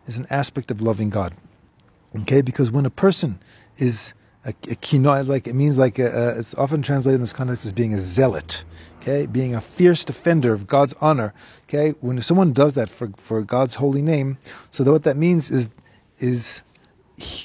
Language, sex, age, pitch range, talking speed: English, male, 40-59, 115-145 Hz, 195 wpm